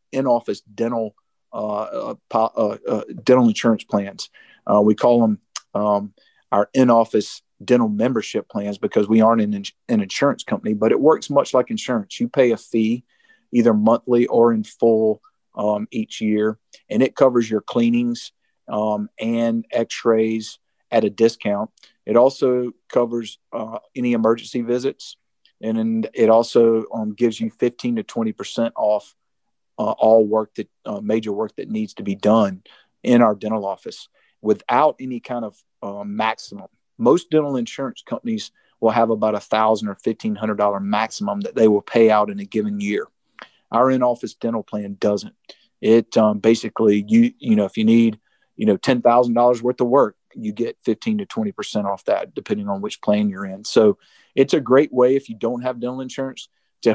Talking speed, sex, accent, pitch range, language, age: 180 wpm, male, American, 110-130 Hz, English, 40-59